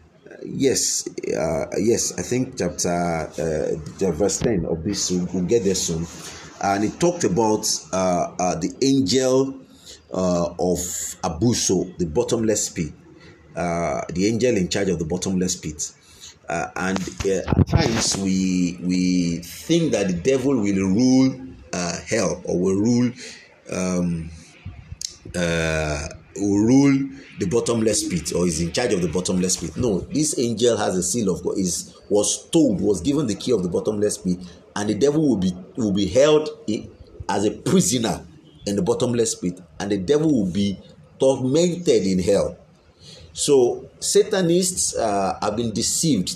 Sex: male